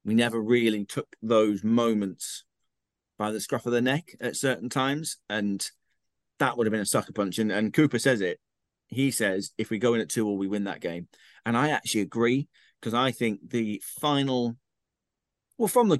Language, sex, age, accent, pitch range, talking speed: English, male, 40-59, British, 110-135 Hz, 200 wpm